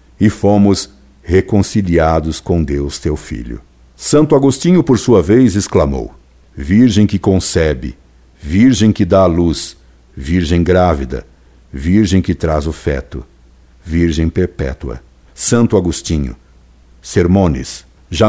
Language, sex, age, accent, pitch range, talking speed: Portuguese, male, 60-79, Brazilian, 75-110 Hz, 110 wpm